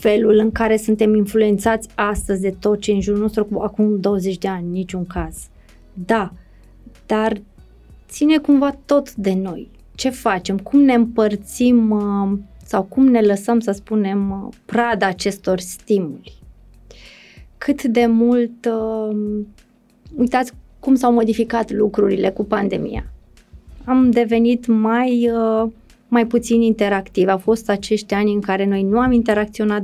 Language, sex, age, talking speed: Romanian, female, 20-39, 130 wpm